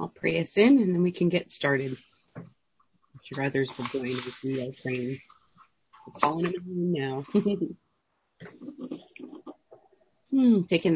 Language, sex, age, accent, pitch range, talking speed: English, female, 30-49, American, 130-150 Hz, 115 wpm